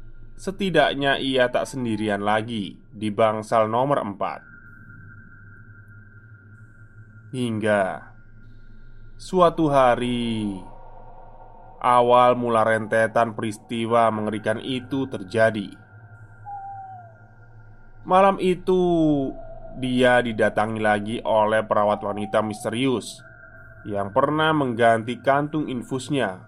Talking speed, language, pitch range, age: 75 wpm, Indonesian, 110-125 Hz, 20-39